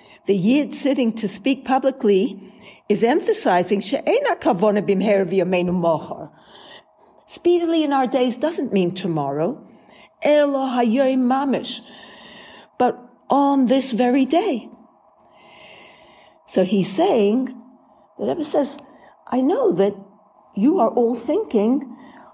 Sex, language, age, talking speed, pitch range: female, English, 60-79, 90 wpm, 205-260 Hz